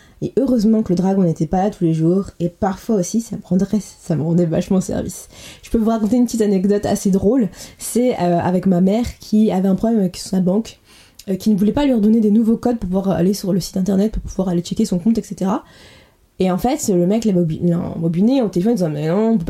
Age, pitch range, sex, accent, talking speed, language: 20-39, 185-230 Hz, female, French, 260 wpm, French